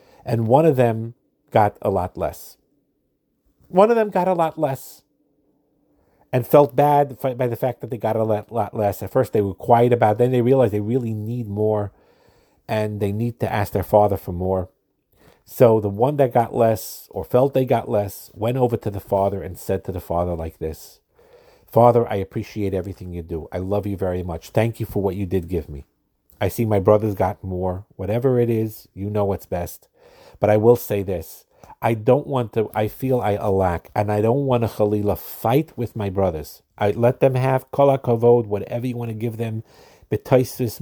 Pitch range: 100-120 Hz